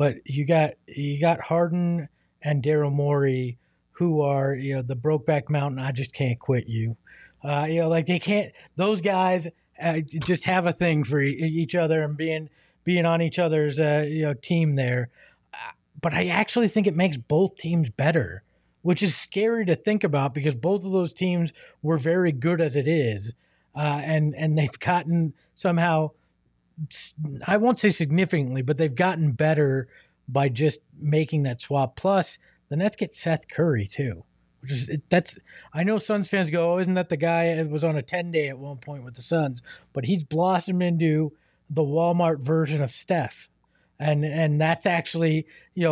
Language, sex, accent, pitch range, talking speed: English, male, American, 140-175 Hz, 185 wpm